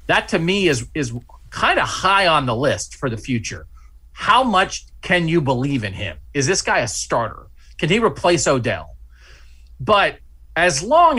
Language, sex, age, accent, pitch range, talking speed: English, male, 30-49, American, 115-165 Hz, 175 wpm